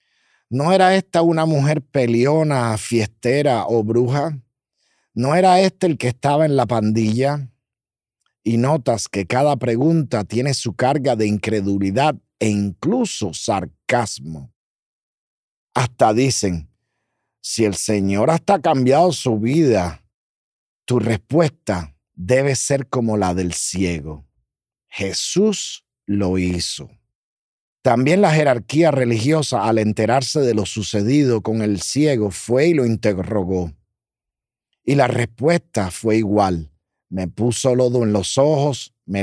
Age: 50-69